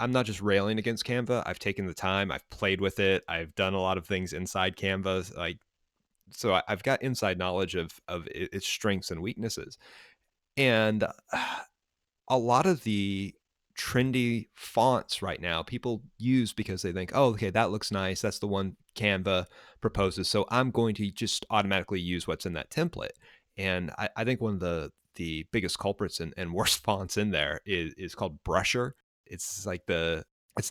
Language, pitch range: English, 95-115 Hz